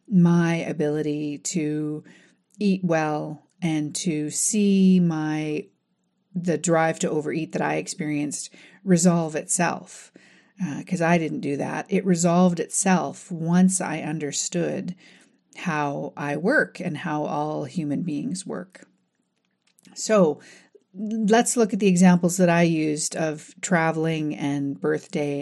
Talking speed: 125 wpm